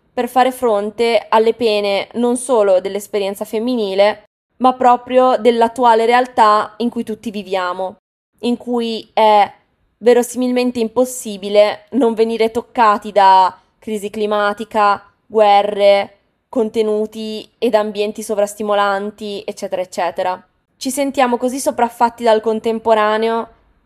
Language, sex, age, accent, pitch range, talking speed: Italian, female, 20-39, native, 210-245 Hz, 105 wpm